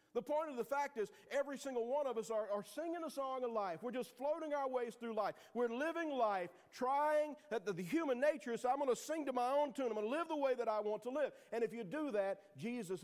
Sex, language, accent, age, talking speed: male, English, American, 50-69, 275 wpm